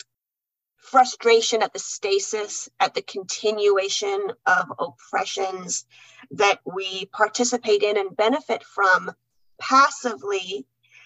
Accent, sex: American, female